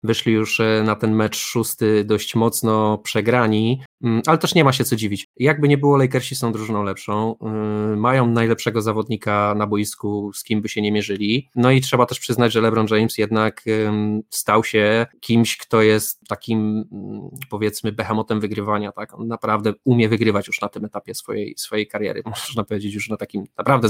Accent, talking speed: native, 175 wpm